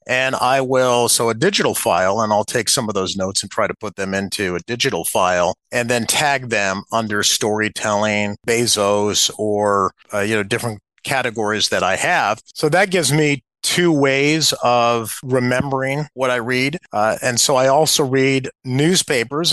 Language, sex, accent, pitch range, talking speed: English, male, American, 110-145 Hz, 175 wpm